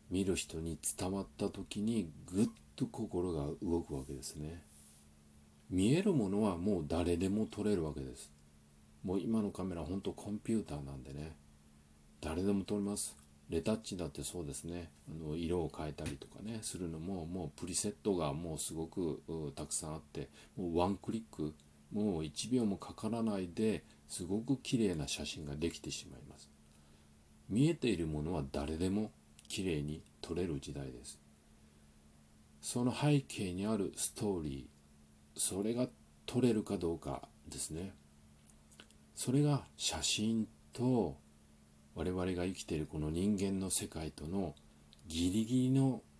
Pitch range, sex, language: 75-100 Hz, male, Japanese